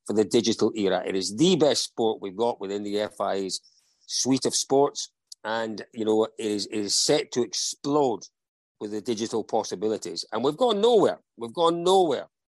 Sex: male